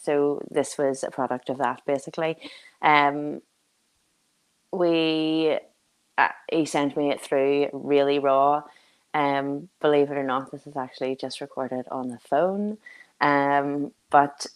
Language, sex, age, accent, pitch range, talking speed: English, female, 20-39, Irish, 135-160 Hz, 135 wpm